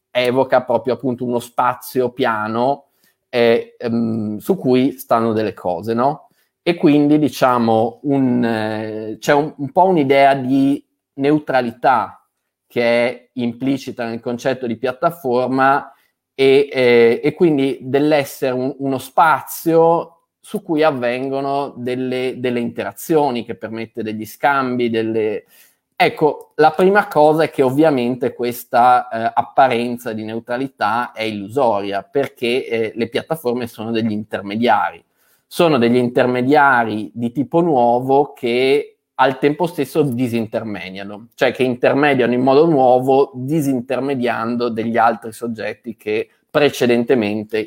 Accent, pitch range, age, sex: native, 115-140 Hz, 20-39, male